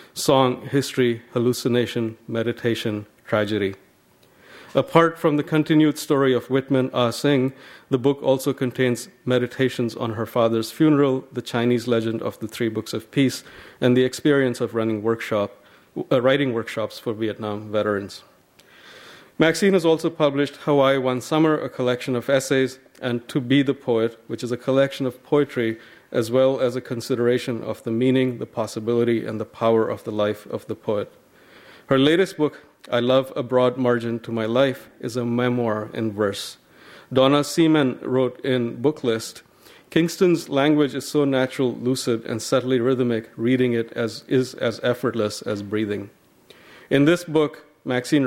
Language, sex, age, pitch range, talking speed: English, male, 40-59, 115-135 Hz, 160 wpm